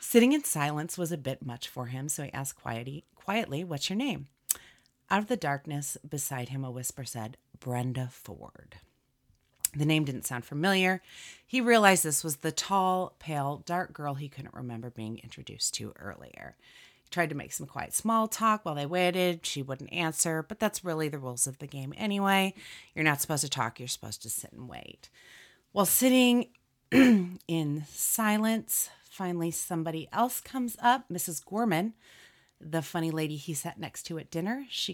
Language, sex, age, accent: English, female, 30-49, American